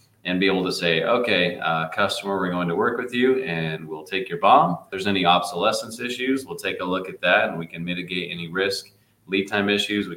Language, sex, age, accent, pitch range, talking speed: English, male, 30-49, American, 90-110 Hz, 235 wpm